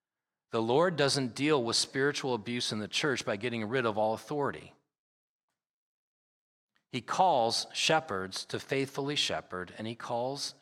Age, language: 30-49, English